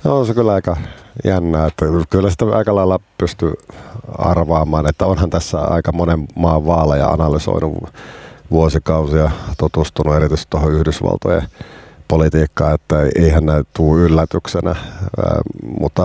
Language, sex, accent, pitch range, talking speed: Finnish, male, native, 80-90 Hz, 125 wpm